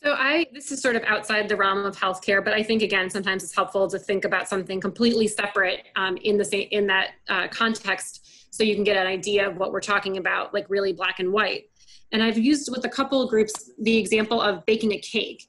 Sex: female